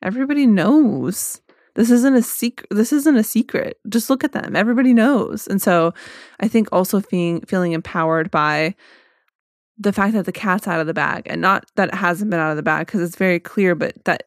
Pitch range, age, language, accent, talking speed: 170-210 Hz, 20-39, English, American, 210 wpm